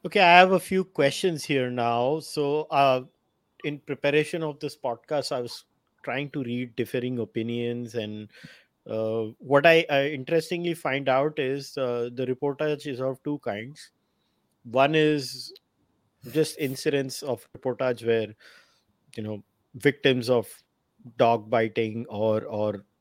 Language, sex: English, male